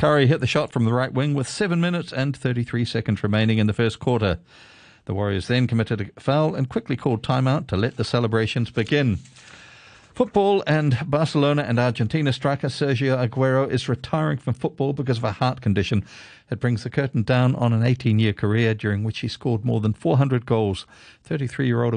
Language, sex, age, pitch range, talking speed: English, male, 50-69, 105-135 Hz, 190 wpm